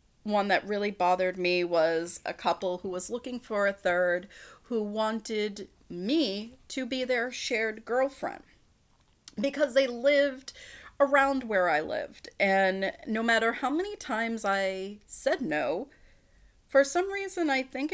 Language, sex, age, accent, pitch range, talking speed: English, female, 30-49, American, 195-275 Hz, 145 wpm